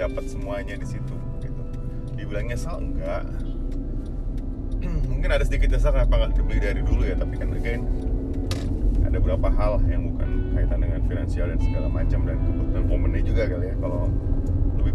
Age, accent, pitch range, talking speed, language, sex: 30-49, native, 90-100 Hz, 155 wpm, Indonesian, male